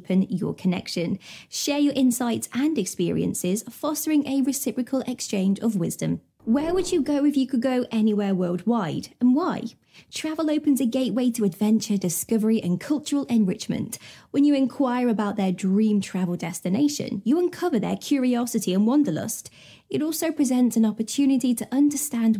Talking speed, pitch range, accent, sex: 155 wpm, 200-280 Hz, British, female